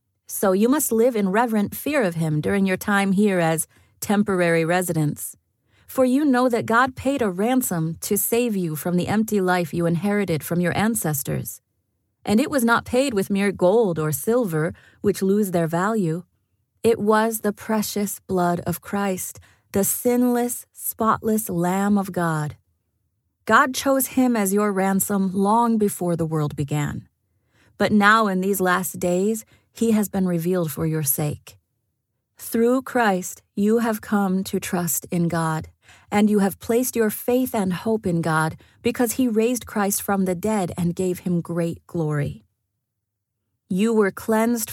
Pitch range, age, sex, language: 160-220 Hz, 30-49, female, English